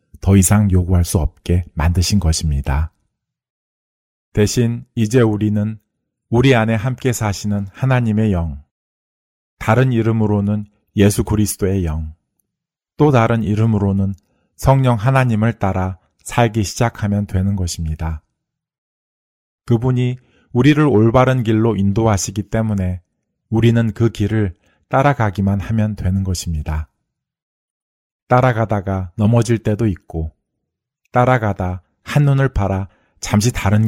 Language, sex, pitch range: Korean, male, 90-115 Hz